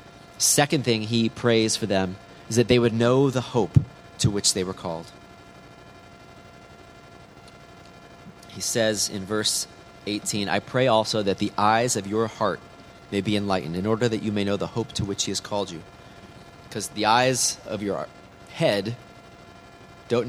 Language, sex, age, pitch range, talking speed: English, male, 30-49, 105-125 Hz, 165 wpm